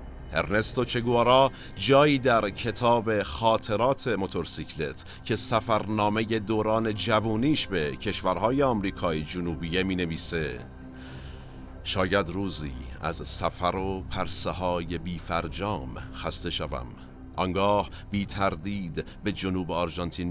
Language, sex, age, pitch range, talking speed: Persian, male, 50-69, 85-110 Hz, 100 wpm